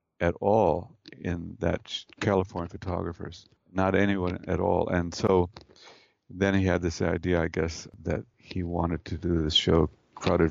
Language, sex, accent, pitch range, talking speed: English, male, American, 85-100 Hz, 155 wpm